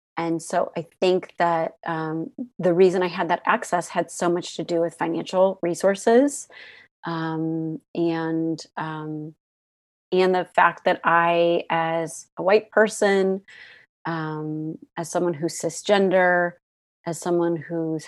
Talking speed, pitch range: 135 wpm, 165-185 Hz